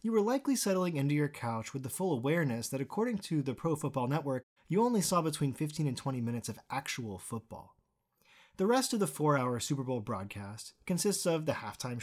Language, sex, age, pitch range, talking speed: English, male, 30-49, 130-185 Hz, 205 wpm